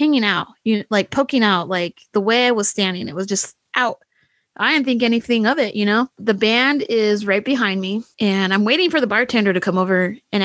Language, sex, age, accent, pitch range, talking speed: English, female, 20-39, American, 205-285 Hz, 230 wpm